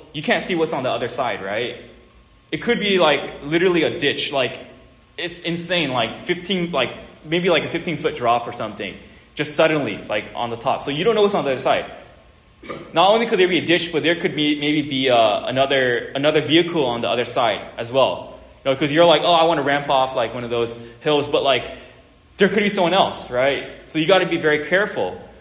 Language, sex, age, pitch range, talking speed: English, male, 10-29, 140-185 Hz, 235 wpm